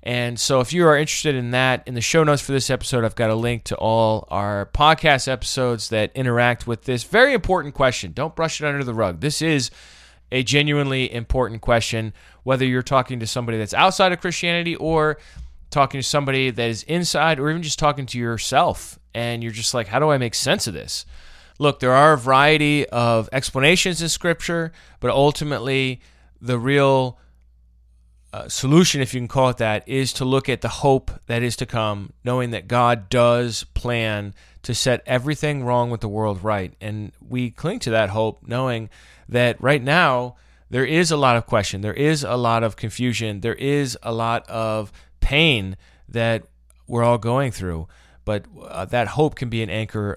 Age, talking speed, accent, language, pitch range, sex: 20-39, 195 wpm, American, English, 110-140 Hz, male